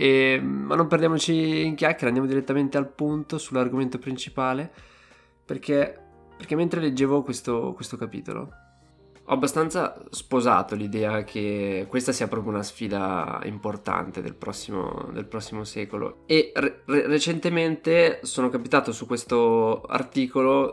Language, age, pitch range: Italian, 20-39, 105-130 Hz